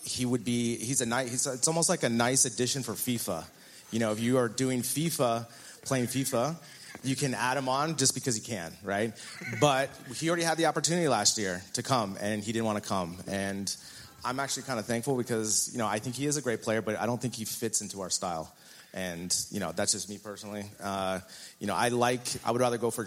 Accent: American